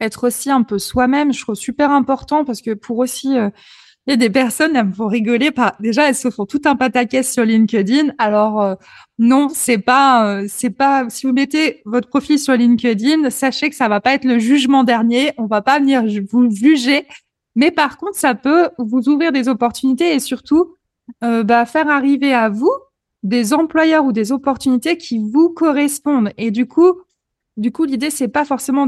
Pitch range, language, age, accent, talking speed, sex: 235-290 Hz, French, 20-39, French, 200 wpm, female